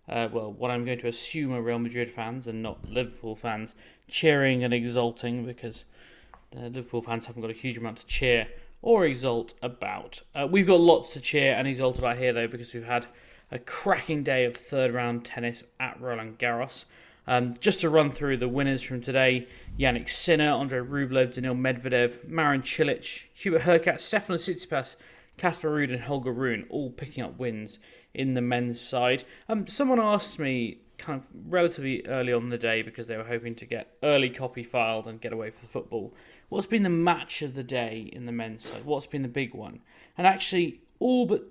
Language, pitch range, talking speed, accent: English, 120-145 Hz, 200 wpm, British